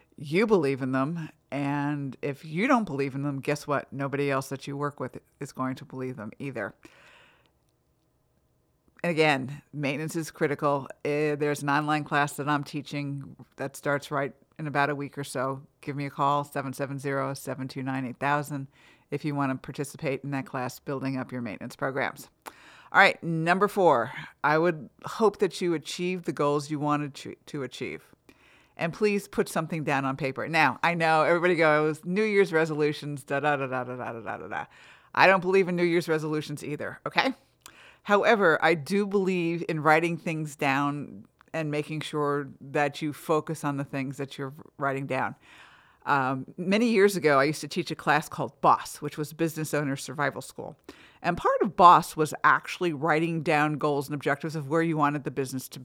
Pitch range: 140-165 Hz